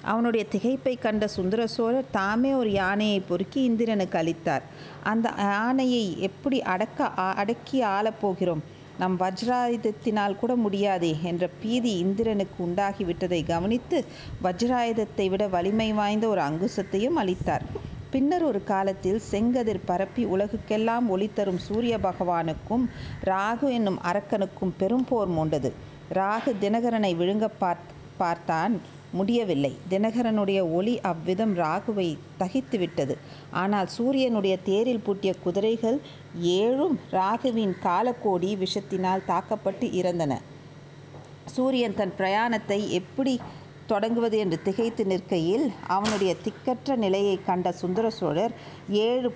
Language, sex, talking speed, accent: Tamil, female, 100 wpm, native